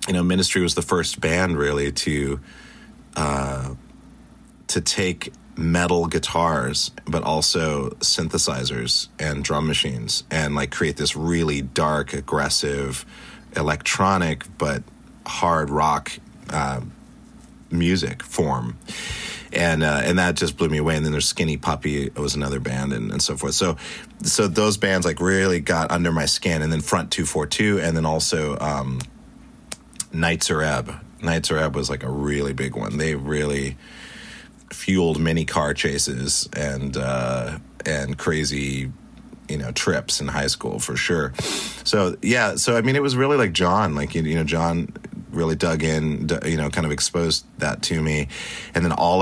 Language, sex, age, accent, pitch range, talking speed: English, male, 30-49, American, 70-85 Hz, 160 wpm